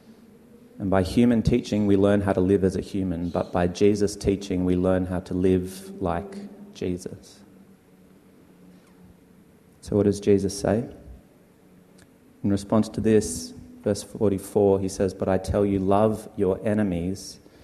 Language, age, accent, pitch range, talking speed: English, 30-49, Australian, 95-105 Hz, 145 wpm